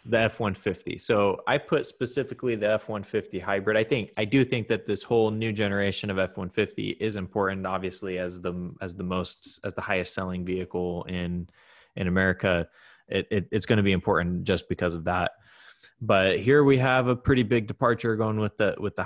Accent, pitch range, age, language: American, 95-115 Hz, 20-39, English